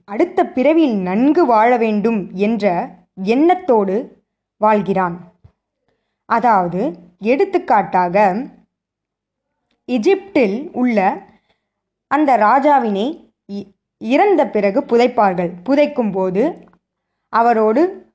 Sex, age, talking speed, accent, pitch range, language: female, 20-39, 65 wpm, native, 205-300 Hz, Tamil